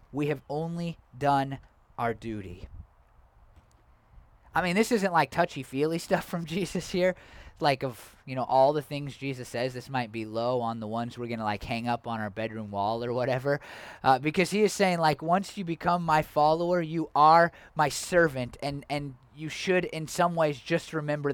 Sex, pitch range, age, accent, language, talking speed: male, 150-215 Hz, 20-39, American, English, 190 wpm